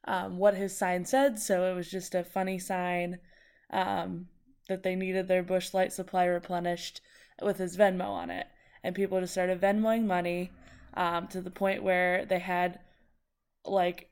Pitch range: 175-195 Hz